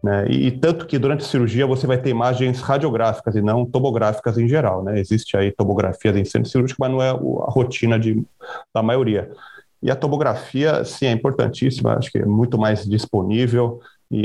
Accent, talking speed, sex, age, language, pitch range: Brazilian, 195 wpm, male, 30-49, Portuguese, 105-125 Hz